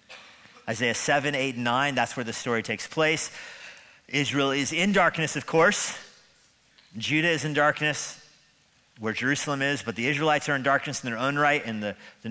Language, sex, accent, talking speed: English, male, American, 175 wpm